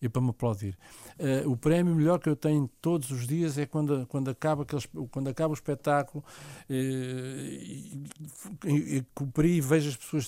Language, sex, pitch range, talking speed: Portuguese, male, 115-140 Hz, 185 wpm